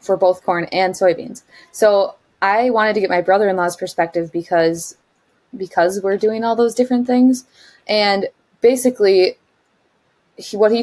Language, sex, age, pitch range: English, female, 20-39, 170-210 Hz